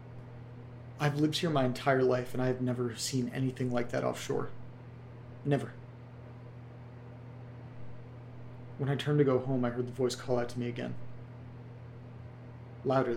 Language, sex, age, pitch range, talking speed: English, male, 30-49, 120-125 Hz, 140 wpm